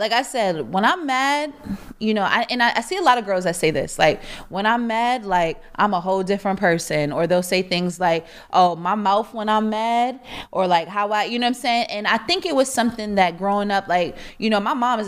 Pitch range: 185-240 Hz